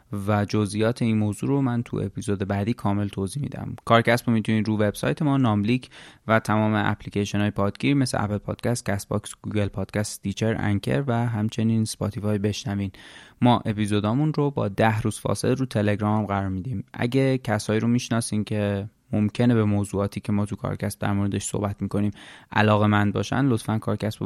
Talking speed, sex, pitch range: 170 wpm, male, 100-120 Hz